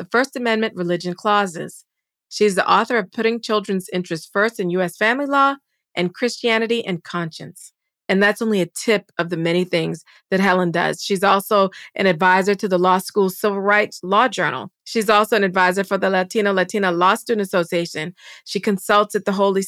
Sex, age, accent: female, 40-59, American